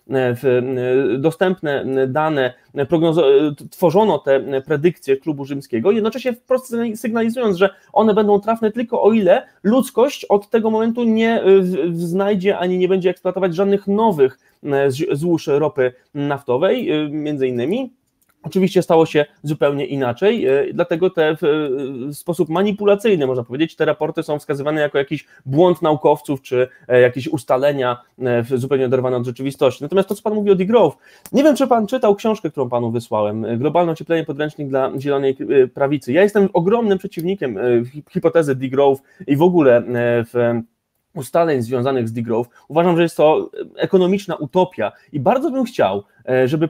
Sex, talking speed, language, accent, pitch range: male, 145 wpm, Polish, native, 140-205 Hz